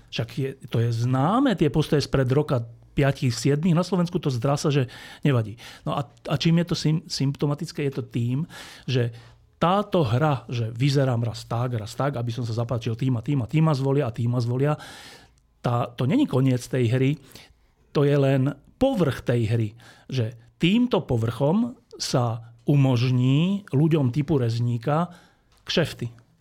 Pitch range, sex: 125-155 Hz, male